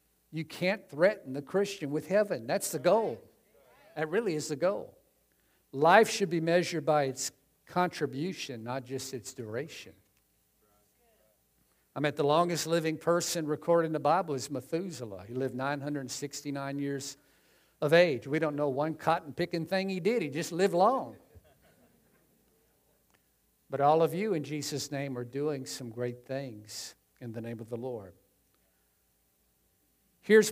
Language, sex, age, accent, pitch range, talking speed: English, male, 50-69, American, 130-170 Hz, 145 wpm